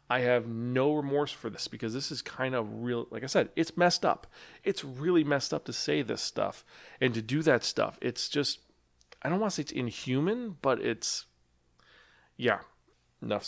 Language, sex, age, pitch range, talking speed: English, male, 30-49, 115-155 Hz, 195 wpm